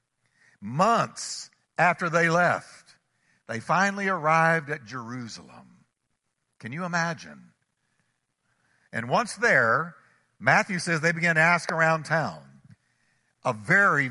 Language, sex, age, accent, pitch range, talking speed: English, male, 60-79, American, 155-220 Hz, 105 wpm